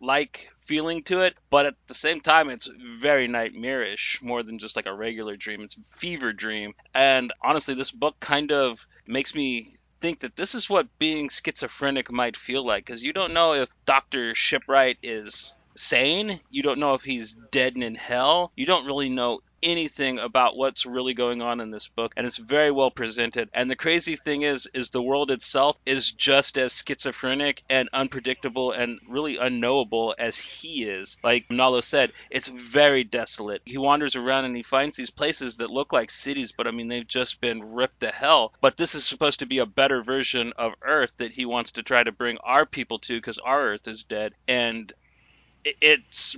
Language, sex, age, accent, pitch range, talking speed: English, male, 30-49, American, 120-145 Hz, 200 wpm